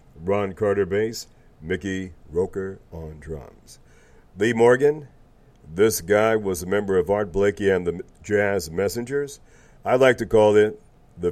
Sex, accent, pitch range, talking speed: male, American, 95-115 Hz, 145 wpm